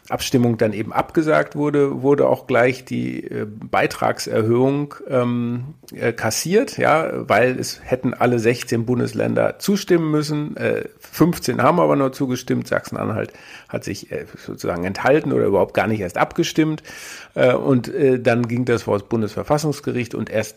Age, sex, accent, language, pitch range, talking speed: 50-69, male, German, German, 115-150 Hz, 150 wpm